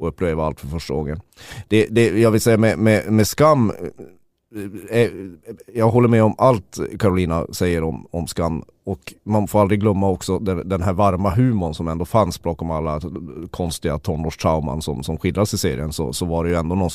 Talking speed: 205 wpm